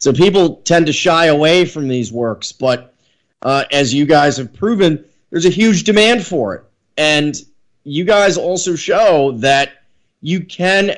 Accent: American